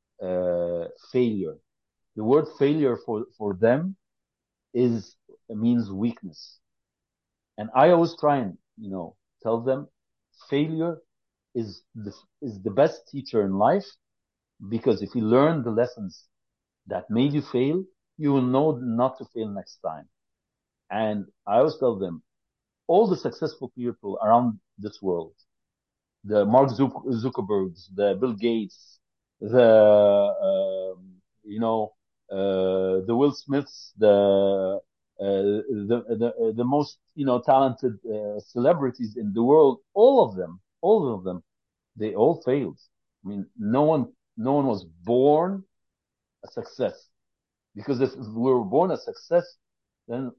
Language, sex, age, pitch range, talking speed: English, male, 50-69, 100-140 Hz, 135 wpm